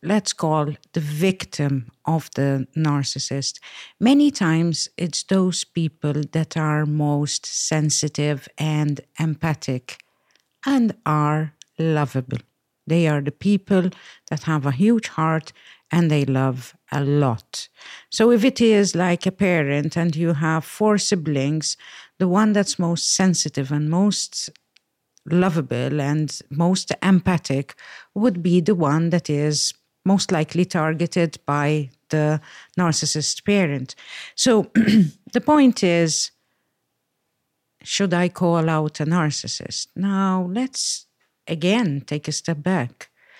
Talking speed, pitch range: 120 wpm, 145-185 Hz